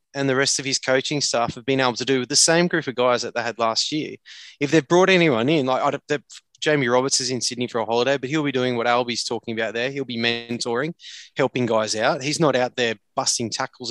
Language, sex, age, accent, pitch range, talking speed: English, male, 20-39, Australian, 120-145 Hz, 260 wpm